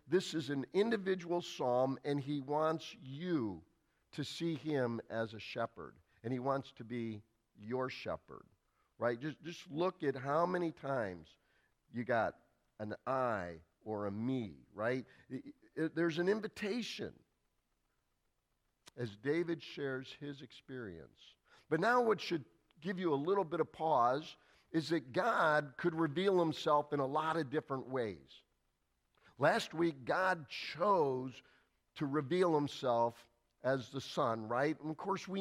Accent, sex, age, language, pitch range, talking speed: American, male, 50-69, English, 130-175 Hz, 145 wpm